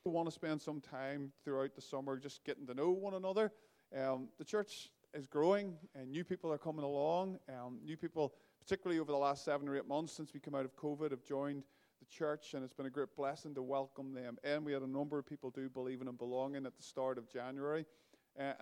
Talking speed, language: 240 wpm, English